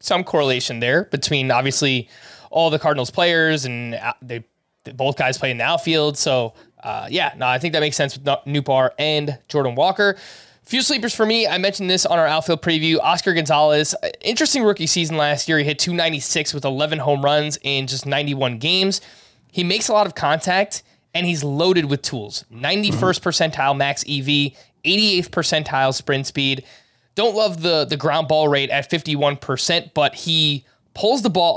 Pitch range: 140-175 Hz